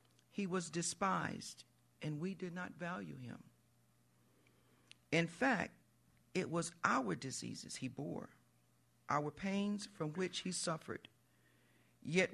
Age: 50-69